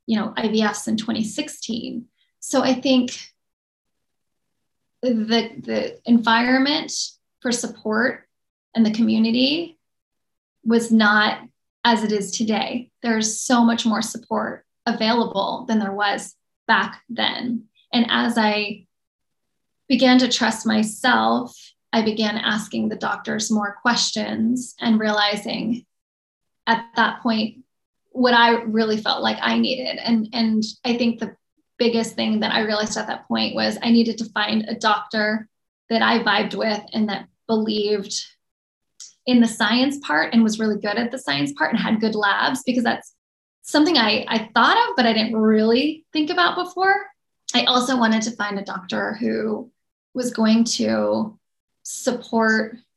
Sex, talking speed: female, 145 wpm